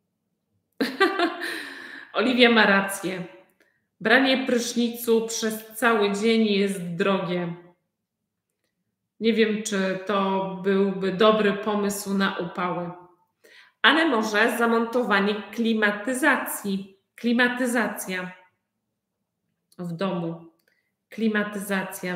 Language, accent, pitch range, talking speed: Polish, native, 190-230 Hz, 75 wpm